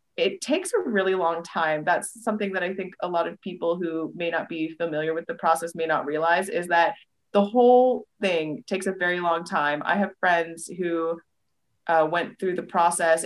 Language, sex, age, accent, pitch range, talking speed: English, female, 20-39, American, 165-200 Hz, 205 wpm